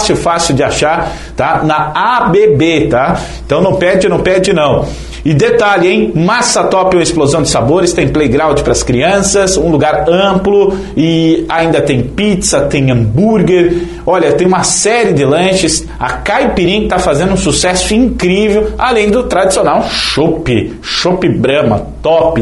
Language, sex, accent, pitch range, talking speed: Portuguese, male, Brazilian, 165-210 Hz, 155 wpm